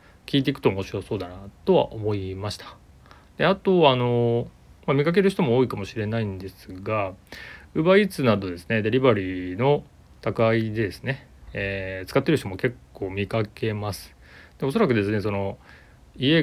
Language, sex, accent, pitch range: Japanese, male, native, 95-130 Hz